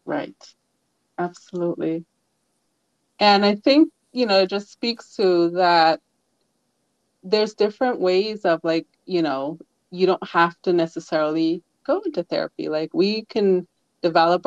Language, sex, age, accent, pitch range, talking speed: English, female, 30-49, American, 165-195 Hz, 130 wpm